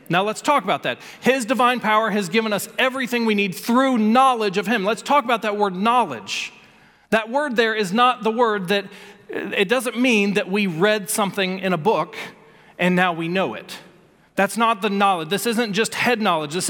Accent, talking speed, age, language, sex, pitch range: American, 205 wpm, 40-59, English, male, 200-255 Hz